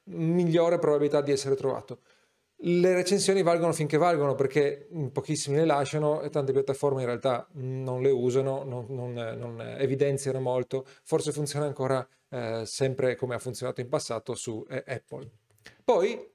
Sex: male